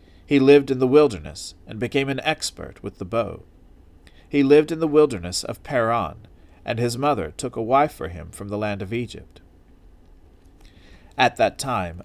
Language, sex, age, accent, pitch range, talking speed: English, male, 40-59, American, 90-140 Hz, 175 wpm